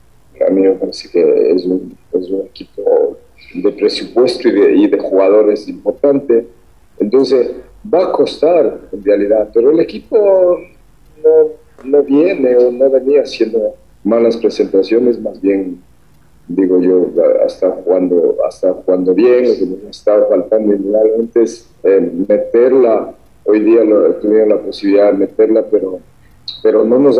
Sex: male